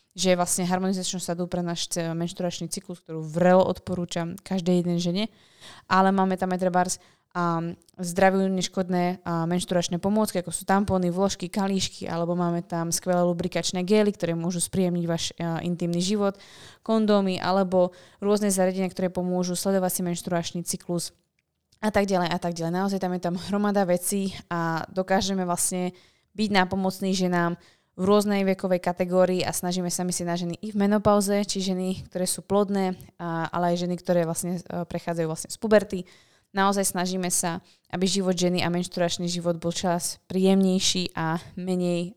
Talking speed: 155 wpm